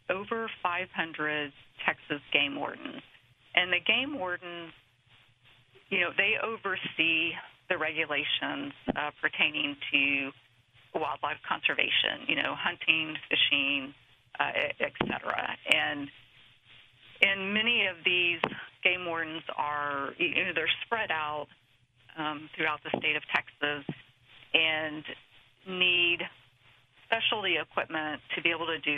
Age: 40-59